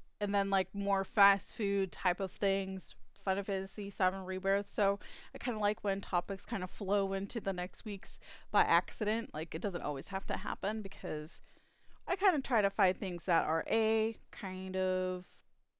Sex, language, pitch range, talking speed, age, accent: female, English, 175-210 Hz, 190 wpm, 20-39, American